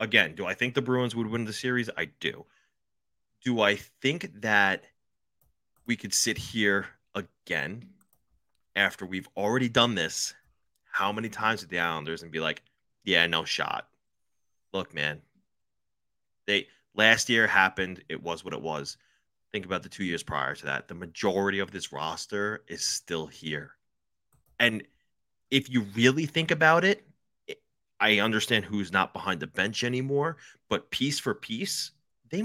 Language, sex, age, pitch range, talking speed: English, male, 30-49, 90-125 Hz, 155 wpm